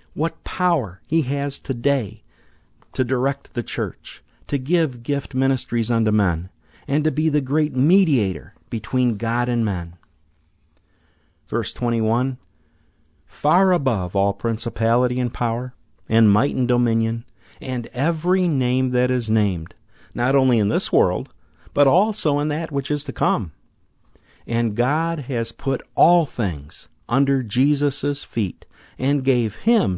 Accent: American